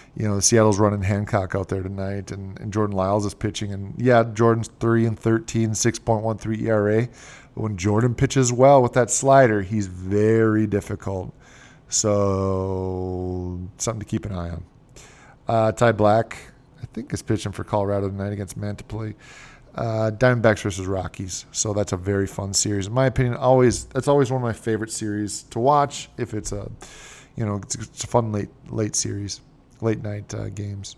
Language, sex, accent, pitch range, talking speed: English, male, American, 105-130 Hz, 175 wpm